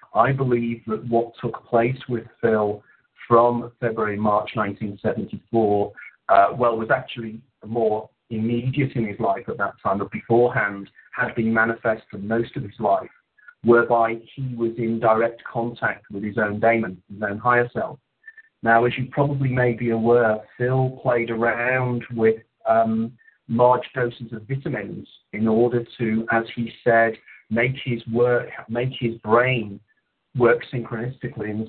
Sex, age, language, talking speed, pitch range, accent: male, 40-59, English, 150 wpm, 110-120 Hz, British